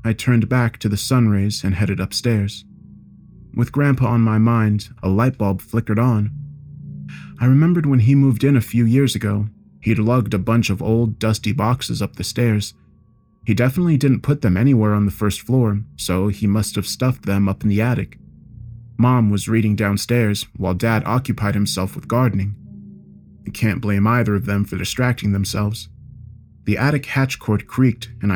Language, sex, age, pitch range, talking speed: English, male, 30-49, 100-120 Hz, 180 wpm